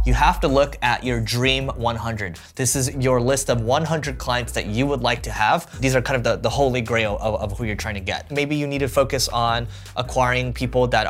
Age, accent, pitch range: 20-39, American, 115-140 Hz